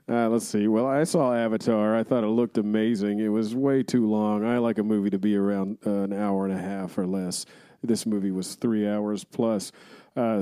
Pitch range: 105-125 Hz